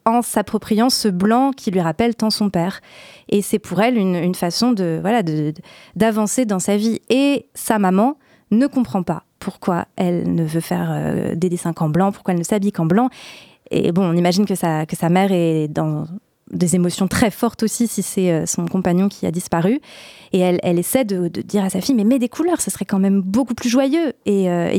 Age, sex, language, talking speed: 20-39, female, French, 230 wpm